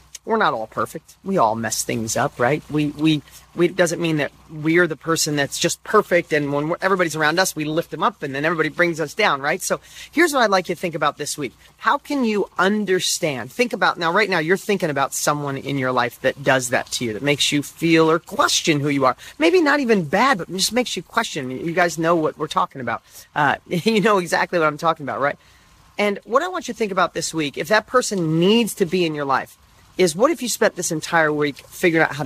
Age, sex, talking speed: 40-59, male, 255 wpm